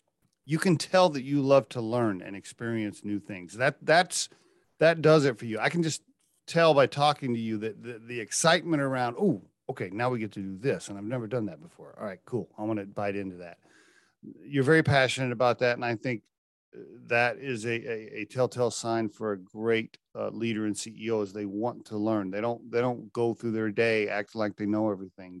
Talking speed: 225 wpm